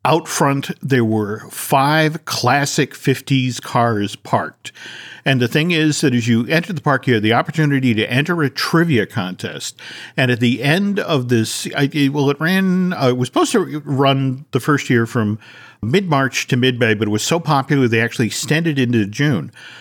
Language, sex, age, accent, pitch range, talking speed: English, male, 50-69, American, 125-165 Hz, 180 wpm